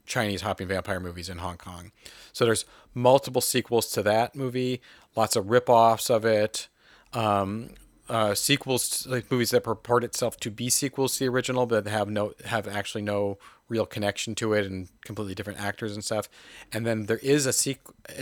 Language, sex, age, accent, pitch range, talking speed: English, male, 40-59, American, 100-120 Hz, 185 wpm